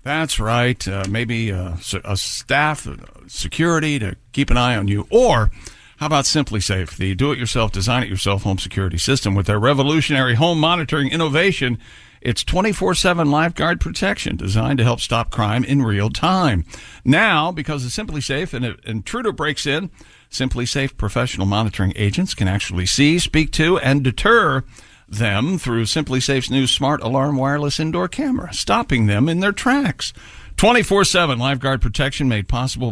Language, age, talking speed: English, 60-79, 160 wpm